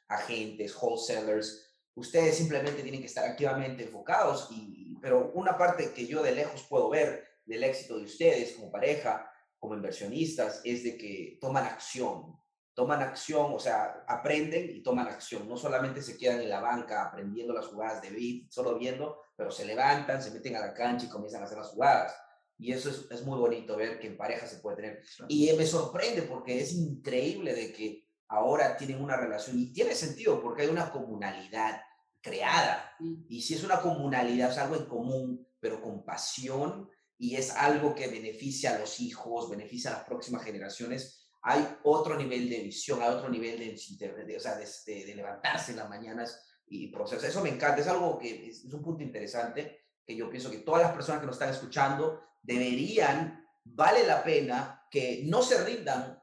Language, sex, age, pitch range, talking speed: Spanish, male, 30-49, 115-160 Hz, 185 wpm